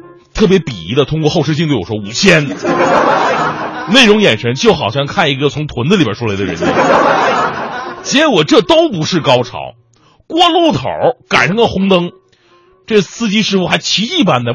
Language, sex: Chinese, male